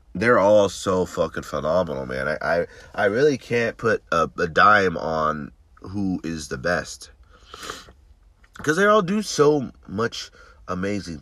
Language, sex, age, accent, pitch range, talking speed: English, male, 30-49, American, 80-115 Hz, 145 wpm